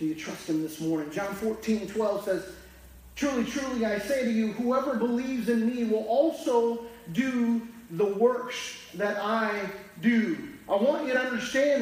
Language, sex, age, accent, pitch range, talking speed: English, male, 40-59, American, 220-285 Hz, 170 wpm